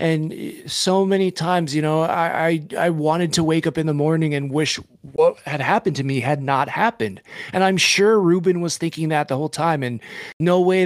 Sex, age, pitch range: male, 20-39, 150-185 Hz